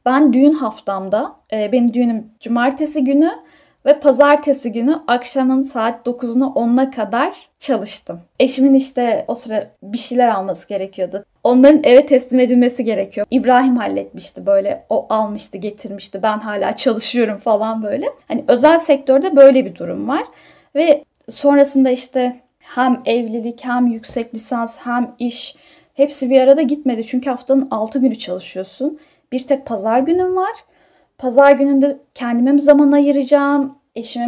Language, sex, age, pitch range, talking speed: Turkish, female, 10-29, 230-290 Hz, 135 wpm